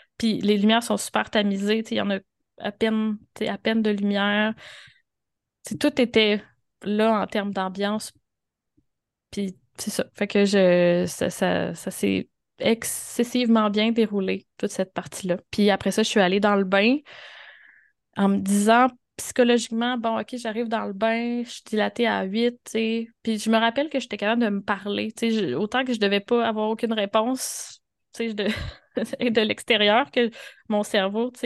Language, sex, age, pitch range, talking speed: French, female, 20-39, 195-230 Hz, 170 wpm